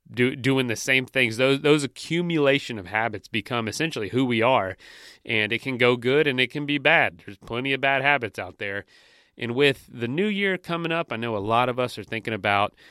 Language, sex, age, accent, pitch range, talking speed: English, male, 30-49, American, 100-130 Hz, 225 wpm